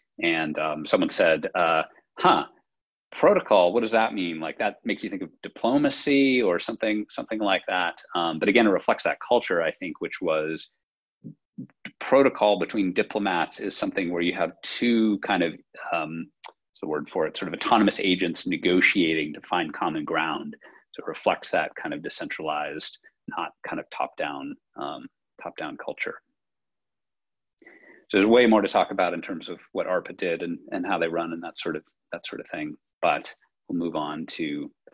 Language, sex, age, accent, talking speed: English, male, 30-49, American, 185 wpm